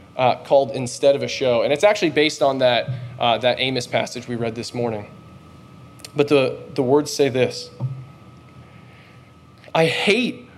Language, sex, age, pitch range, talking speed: English, male, 20-39, 140-220 Hz, 160 wpm